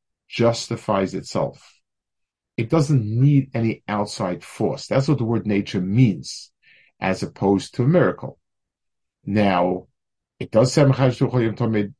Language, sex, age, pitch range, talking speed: English, male, 50-69, 105-140 Hz, 115 wpm